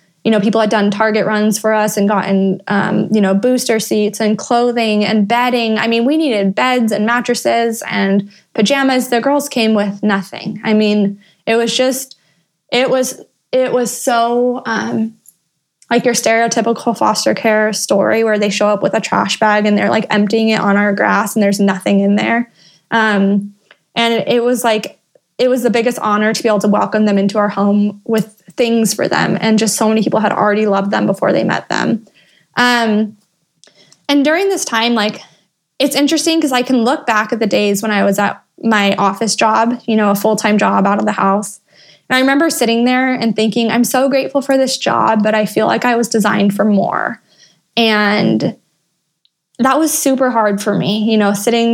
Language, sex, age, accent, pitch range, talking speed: English, female, 20-39, American, 205-235 Hz, 200 wpm